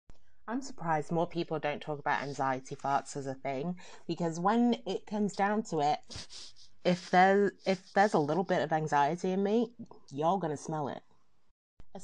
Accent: British